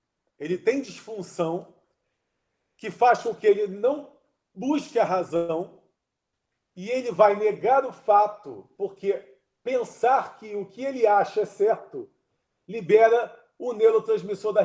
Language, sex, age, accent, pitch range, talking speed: Portuguese, male, 40-59, Brazilian, 180-230 Hz, 125 wpm